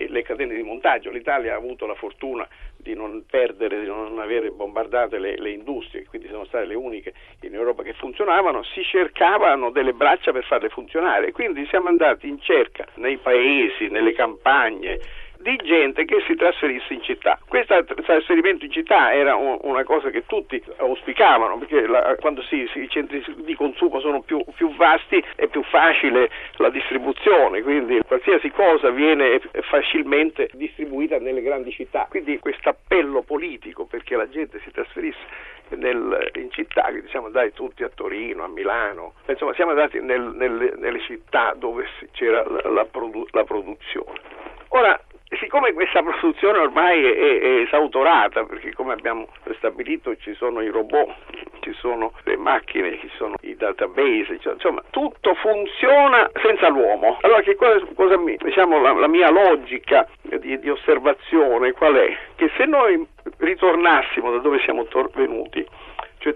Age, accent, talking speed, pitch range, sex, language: 50-69, native, 160 wpm, 330-430 Hz, male, Italian